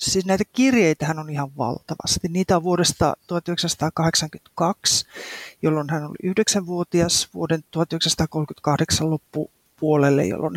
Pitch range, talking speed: 155-195 Hz, 110 wpm